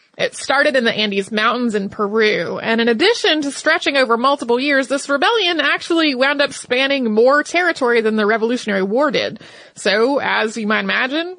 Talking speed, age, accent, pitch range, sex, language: 180 wpm, 30-49, American, 220-295 Hz, female, English